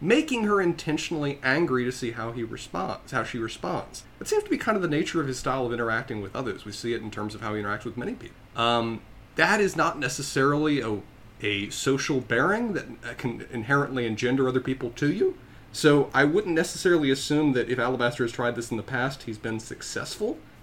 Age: 30-49